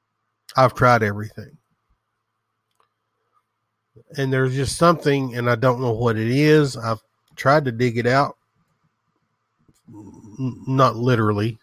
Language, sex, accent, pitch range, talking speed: English, male, American, 110-140 Hz, 115 wpm